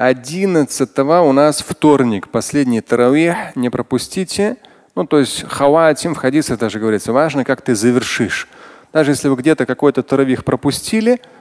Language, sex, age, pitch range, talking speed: Russian, male, 30-49, 125-160 Hz, 140 wpm